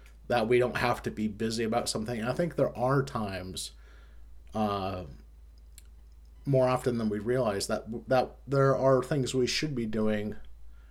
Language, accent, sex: English, American, male